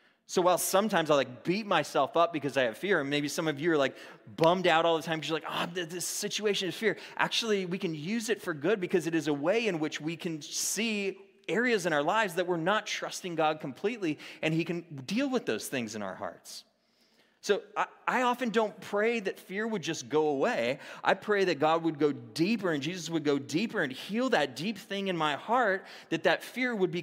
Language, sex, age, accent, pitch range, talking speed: English, male, 30-49, American, 130-185 Hz, 235 wpm